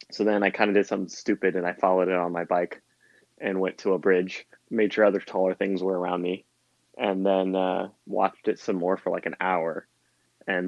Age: 20-39